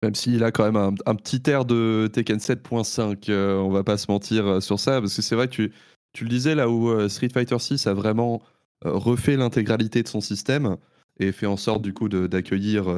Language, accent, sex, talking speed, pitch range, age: French, French, male, 225 wpm, 100-125 Hz, 20-39